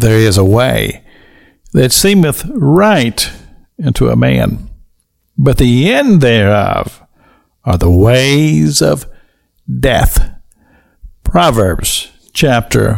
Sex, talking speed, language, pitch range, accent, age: male, 95 wpm, English, 115-150 Hz, American, 60-79